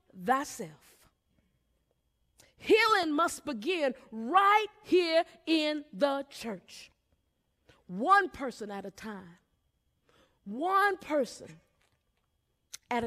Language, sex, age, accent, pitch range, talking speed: English, female, 40-59, American, 275-385 Hz, 80 wpm